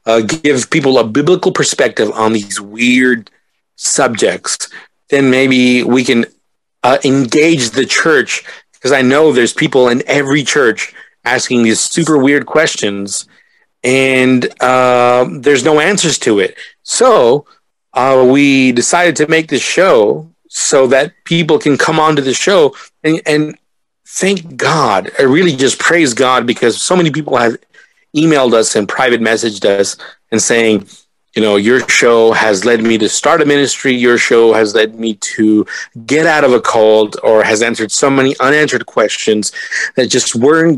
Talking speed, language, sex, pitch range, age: 160 wpm, English, male, 115-150 Hz, 40-59